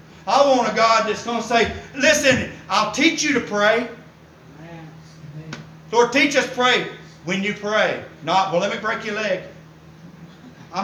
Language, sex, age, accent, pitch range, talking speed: English, male, 50-69, American, 170-235 Hz, 165 wpm